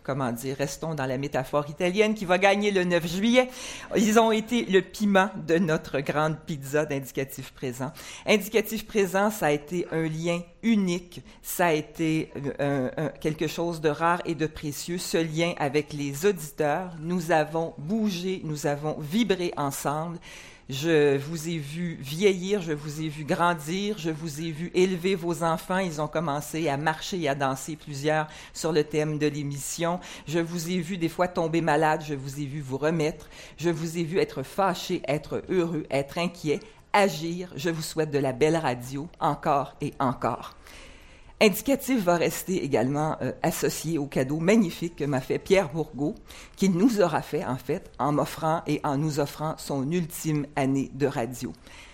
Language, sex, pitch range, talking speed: English, female, 140-180 Hz, 180 wpm